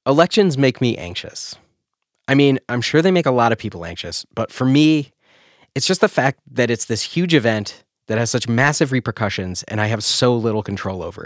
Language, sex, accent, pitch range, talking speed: English, male, American, 110-150 Hz, 210 wpm